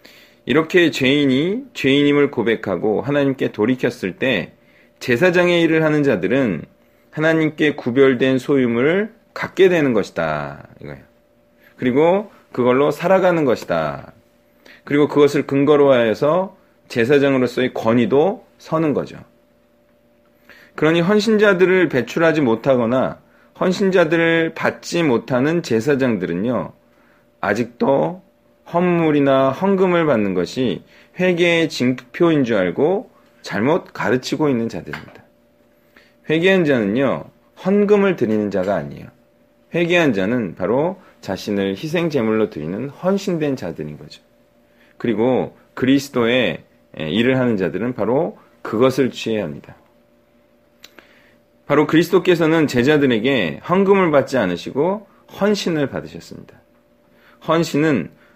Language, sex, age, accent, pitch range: Korean, male, 40-59, native, 125-175 Hz